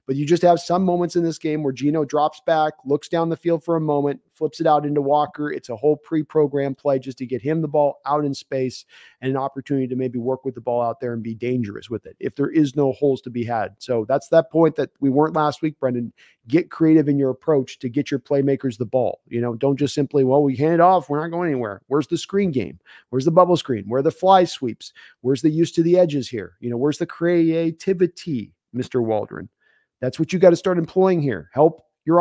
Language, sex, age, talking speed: English, male, 40-59, 250 wpm